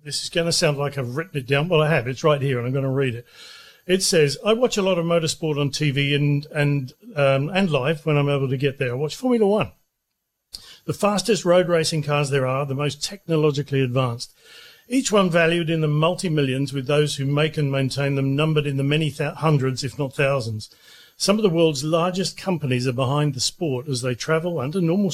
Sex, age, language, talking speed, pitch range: male, 50-69, English, 220 wpm, 140-170 Hz